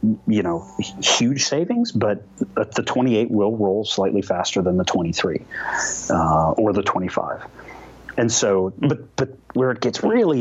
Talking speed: 155 wpm